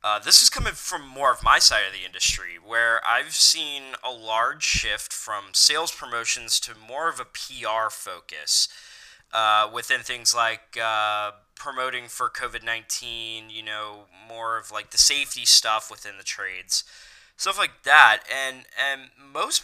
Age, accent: 10-29, American